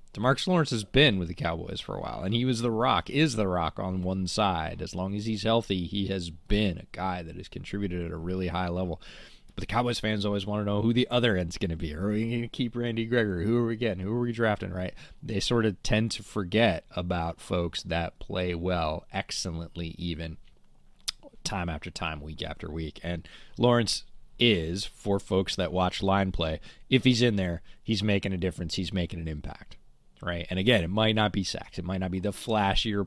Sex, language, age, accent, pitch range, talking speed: male, English, 30-49, American, 90-110 Hz, 225 wpm